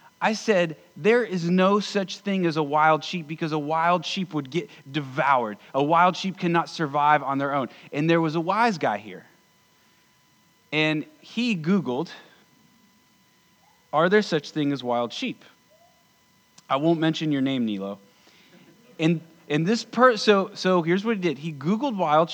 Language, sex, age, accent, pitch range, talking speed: English, male, 30-49, American, 155-195 Hz, 165 wpm